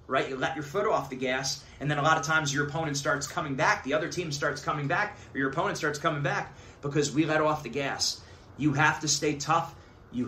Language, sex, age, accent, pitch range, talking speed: English, male, 30-49, American, 130-170 Hz, 250 wpm